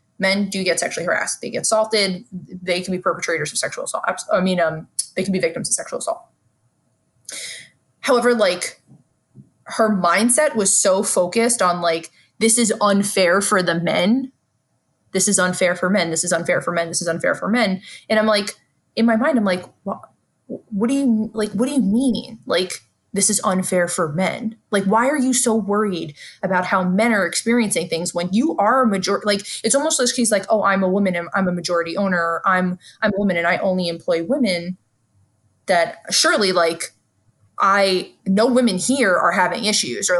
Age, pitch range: 20-39, 175-225 Hz